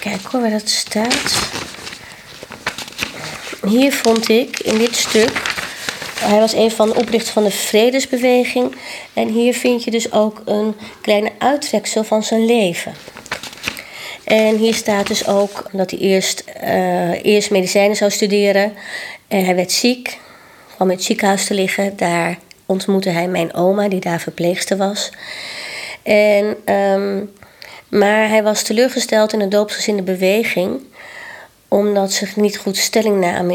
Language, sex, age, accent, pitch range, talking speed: Dutch, female, 20-39, Dutch, 190-225 Hz, 145 wpm